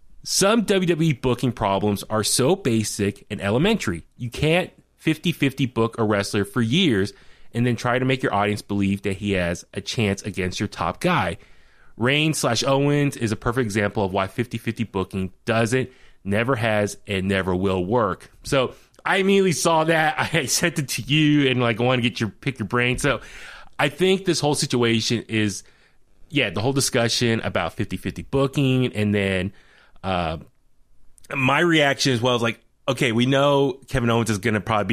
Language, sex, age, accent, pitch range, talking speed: English, male, 20-39, American, 105-140 Hz, 180 wpm